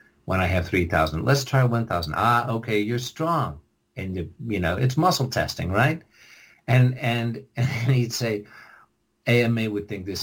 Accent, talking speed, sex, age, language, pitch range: American, 165 wpm, male, 50-69, English, 90-120 Hz